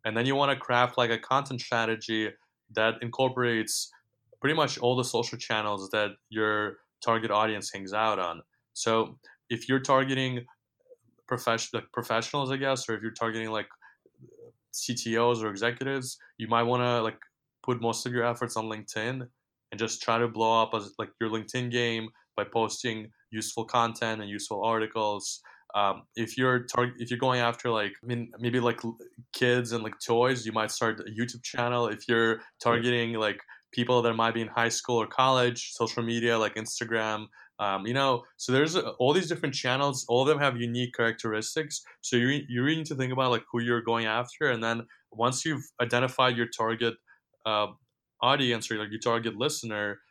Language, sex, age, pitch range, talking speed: English, male, 20-39, 115-125 Hz, 190 wpm